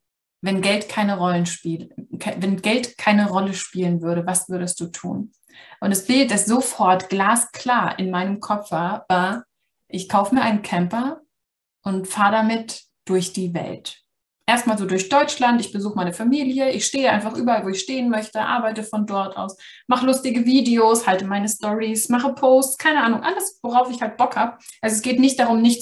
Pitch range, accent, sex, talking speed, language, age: 185-235 Hz, German, female, 180 wpm, German, 20-39